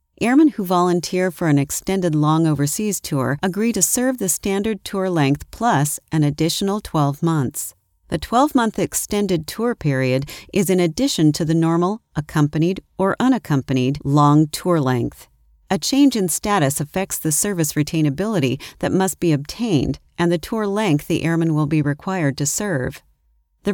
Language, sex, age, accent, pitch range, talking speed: English, female, 40-59, American, 145-200 Hz, 155 wpm